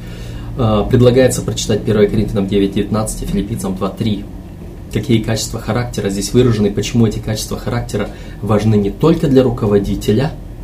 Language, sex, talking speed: Russian, male, 120 wpm